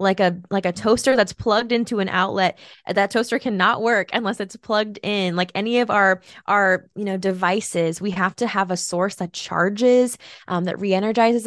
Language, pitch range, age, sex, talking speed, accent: English, 180-215 Hz, 20-39, female, 195 wpm, American